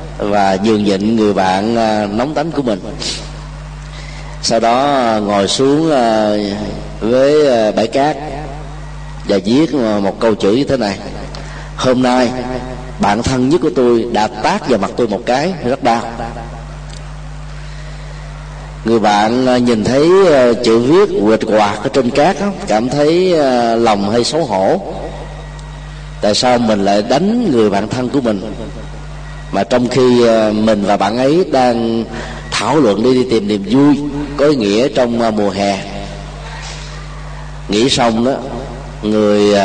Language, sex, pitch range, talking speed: Vietnamese, male, 105-150 Hz, 135 wpm